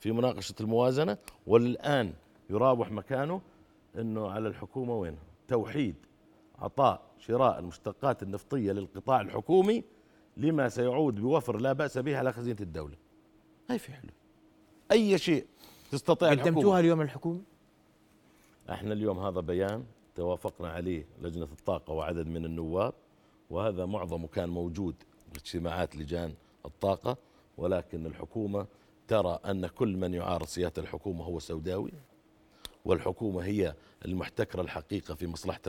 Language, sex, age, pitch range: Arabic, male, 50-69, 90-130 Hz